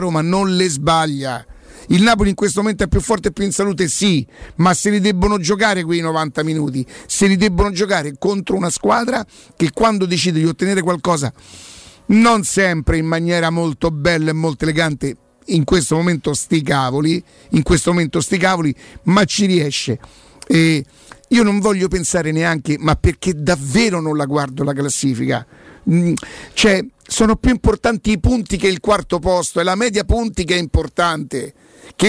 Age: 50-69